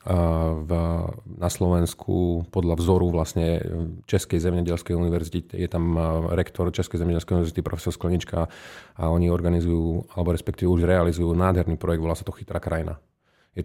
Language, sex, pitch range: Slovak, male, 85-90 Hz